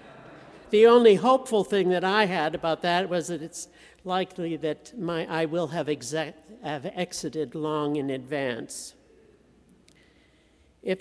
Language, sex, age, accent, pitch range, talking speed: English, male, 60-79, American, 160-200 Hz, 125 wpm